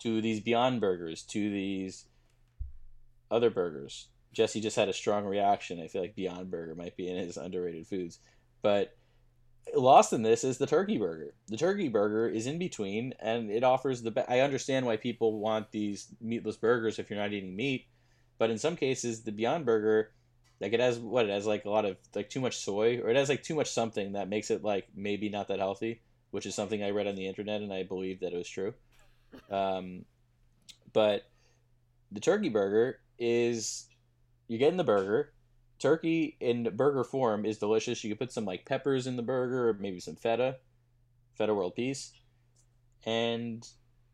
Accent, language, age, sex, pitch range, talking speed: American, English, 20-39, male, 105-120 Hz, 195 wpm